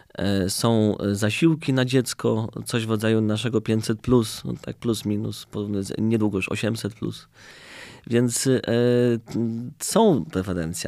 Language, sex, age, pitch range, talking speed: Polish, male, 30-49, 100-120 Hz, 110 wpm